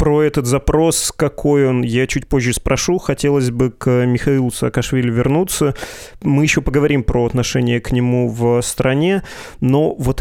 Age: 20-39